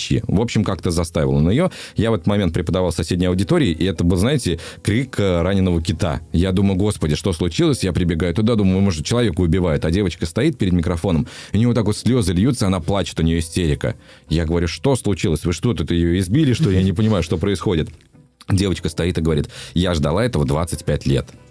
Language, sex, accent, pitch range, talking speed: Russian, male, native, 85-115 Hz, 205 wpm